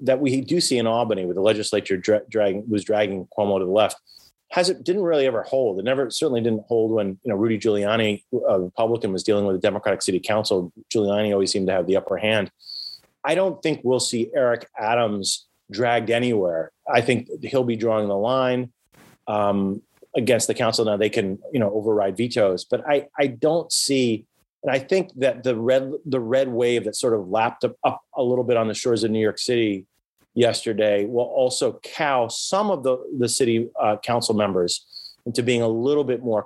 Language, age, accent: English, 30-49, American